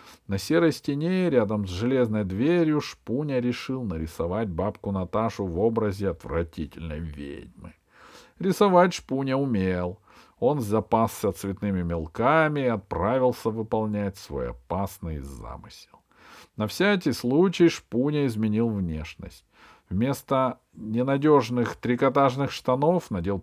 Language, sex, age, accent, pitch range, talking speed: Russian, male, 50-69, native, 100-135 Hz, 100 wpm